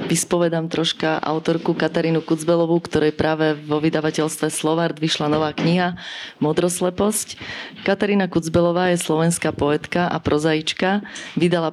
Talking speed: 115 wpm